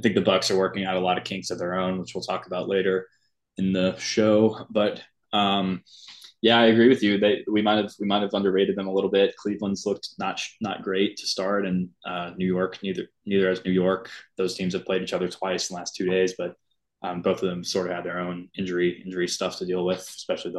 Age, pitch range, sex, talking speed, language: 20-39, 90-100 Hz, male, 250 wpm, English